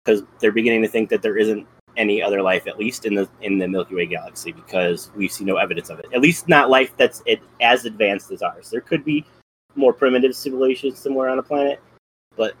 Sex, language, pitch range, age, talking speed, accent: male, English, 105-135 Hz, 30-49, 225 wpm, American